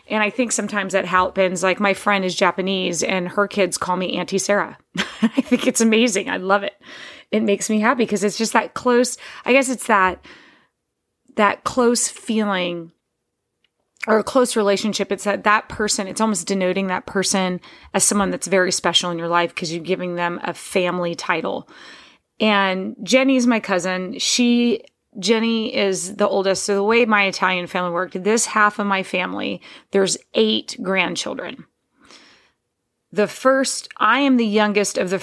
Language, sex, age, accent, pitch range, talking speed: English, female, 30-49, American, 185-215 Hz, 170 wpm